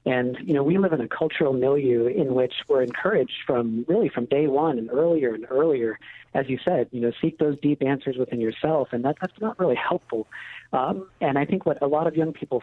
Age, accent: 50-69, American